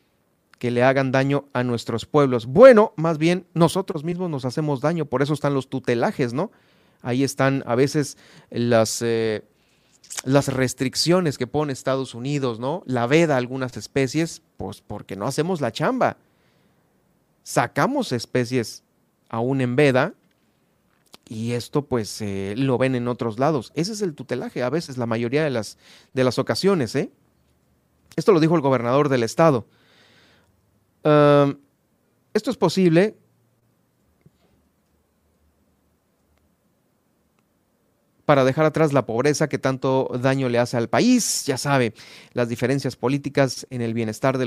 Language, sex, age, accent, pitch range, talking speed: Spanish, male, 40-59, Mexican, 120-150 Hz, 140 wpm